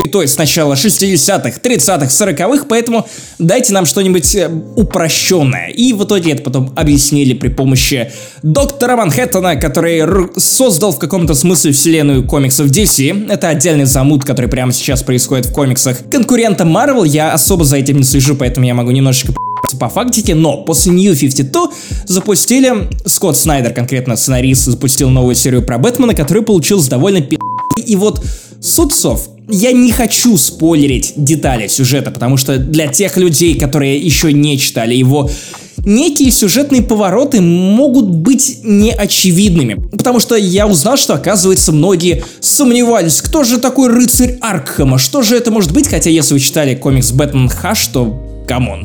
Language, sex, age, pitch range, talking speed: Russian, male, 20-39, 135-210 Hz, 150 wpm